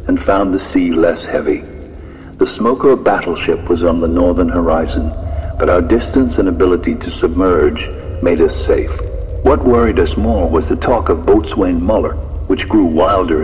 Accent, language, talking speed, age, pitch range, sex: American, English, 165 wpm, 60-79, 80-90 Hz, male